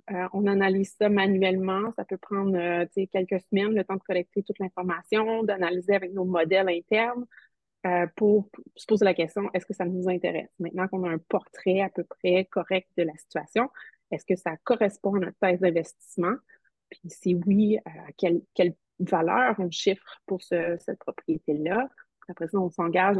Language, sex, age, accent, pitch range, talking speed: French, female, 30-49, Canadian, 175-200 Hz, 185 wpm